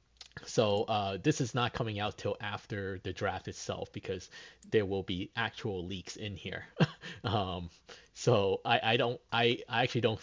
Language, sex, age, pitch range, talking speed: English, male, 30-49, 95-115 Hz, 170 wpm